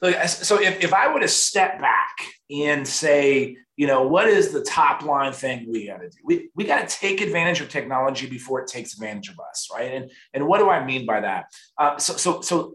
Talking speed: 235 wpm